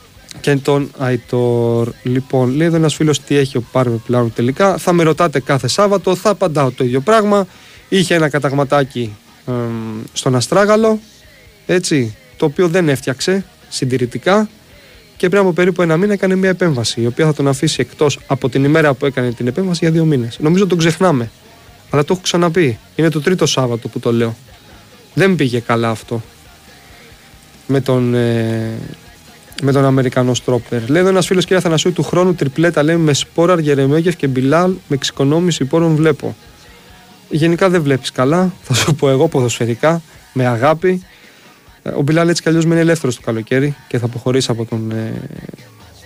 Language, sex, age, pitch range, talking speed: Greek, male, 20-39, 125-170 Hz, 170 wpm